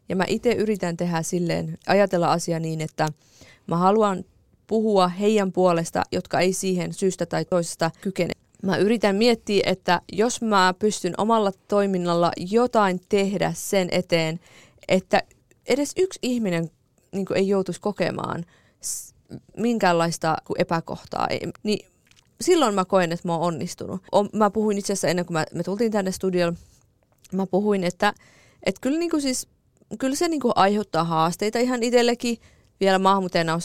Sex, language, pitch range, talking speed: female, Finnish, 170-210 Hz, 140 wpm